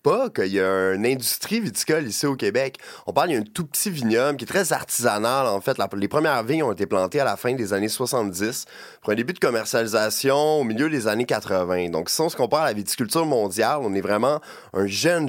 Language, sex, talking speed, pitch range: French, male, 230 wpm, 105-150 Hz